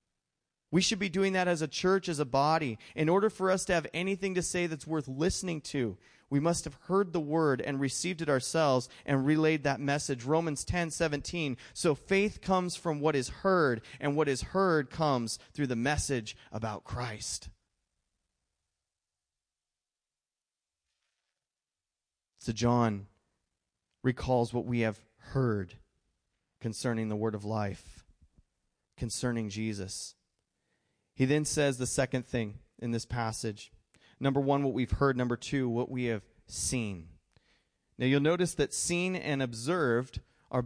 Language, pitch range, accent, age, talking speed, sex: English, 115-155 Hz, American, 30-49, 145 wpm, male